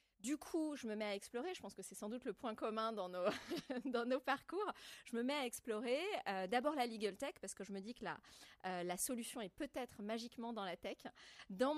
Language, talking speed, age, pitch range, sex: French, 235 wpm, 30-49, 185-240 Hz, female